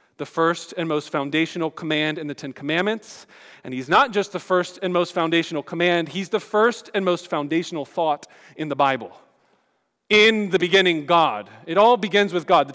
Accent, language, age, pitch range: American, English, 40-59, 150-205 Hz